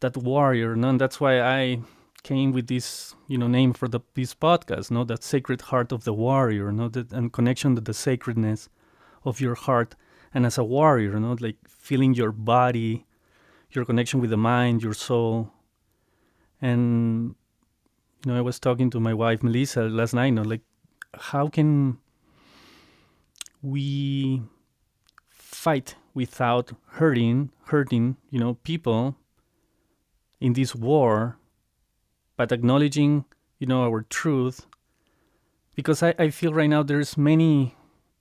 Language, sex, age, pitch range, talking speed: English, male, 30-49, 115-140 Hz, 145 wpm